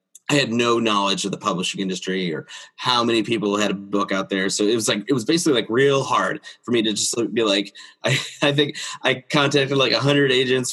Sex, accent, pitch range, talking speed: male, American, 105-145 Hz, 235 wpm